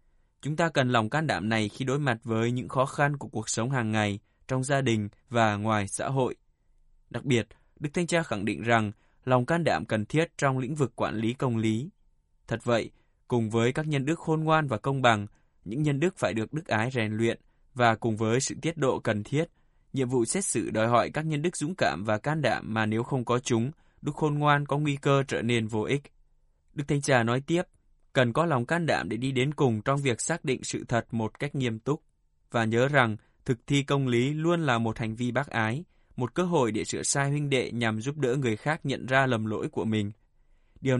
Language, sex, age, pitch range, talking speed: Vietnamese, male, 20-39, 110-145 Hz, 235 wpm